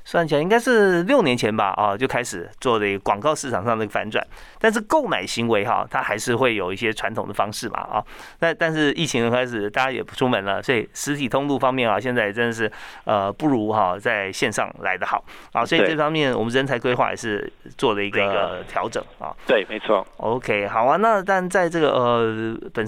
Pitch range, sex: 110-145 Hz, male